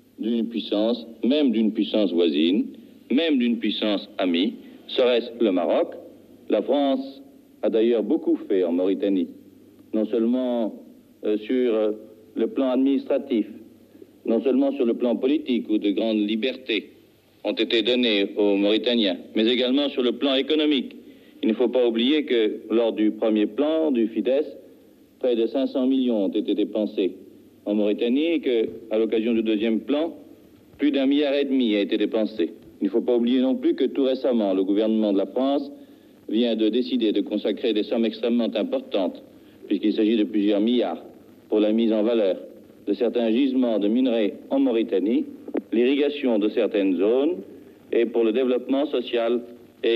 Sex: male